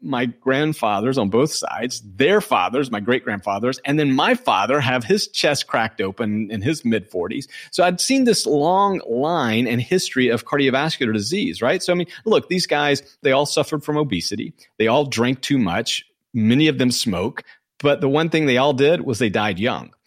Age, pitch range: 40-59, 120-165 Hz